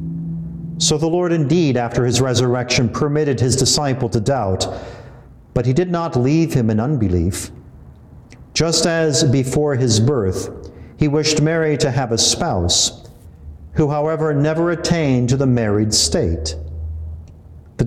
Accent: American